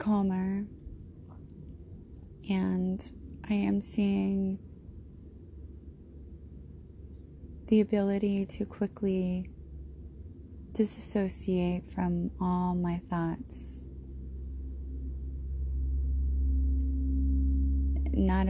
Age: 20-39